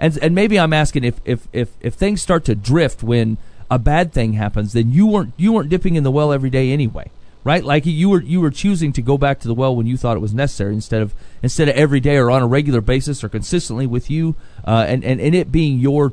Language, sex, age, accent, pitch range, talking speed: English, male, 40-59, American, 110-150 Hz, 265 wpm